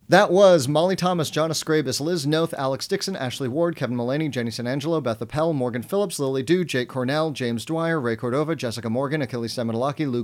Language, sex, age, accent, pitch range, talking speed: English, male, 30-49, American, 110-155 Hz, 200 wpm